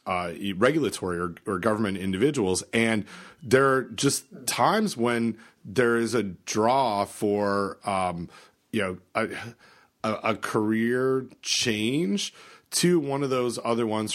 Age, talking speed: 30-49, 125 wpm